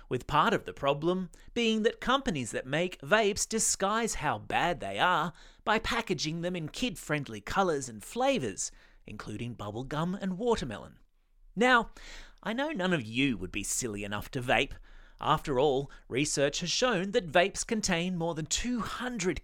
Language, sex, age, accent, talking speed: English, male, 30-49, Australian, 165 wpm